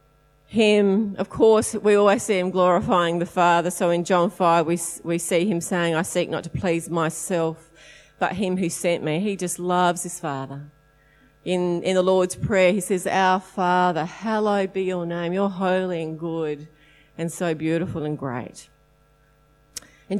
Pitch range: 150-190 Hz